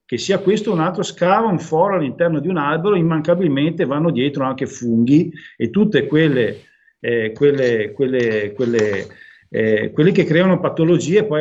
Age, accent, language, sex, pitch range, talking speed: 50-69, native, Italian, male, 125-170 Hz, 165 wpm